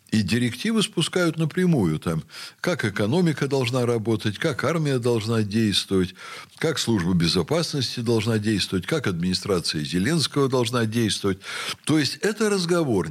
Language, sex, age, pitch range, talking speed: Russian, male, 60-79, 100-155 Hz, 120 wpm